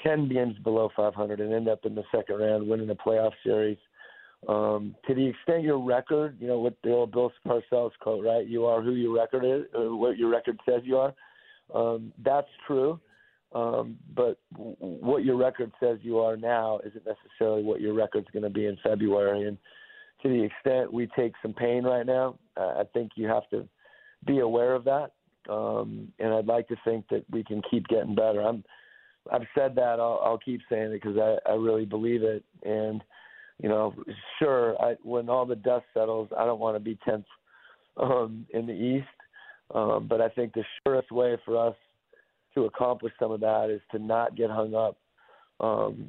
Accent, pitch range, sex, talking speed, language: American, 110-125 Hz, male, 200 wpm, English